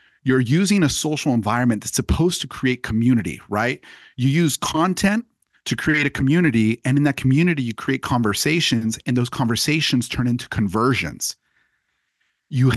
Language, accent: English, American